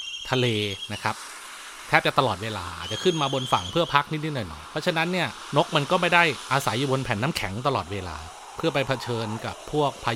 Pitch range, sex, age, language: 115-155 Hz, male, 30-49, Thai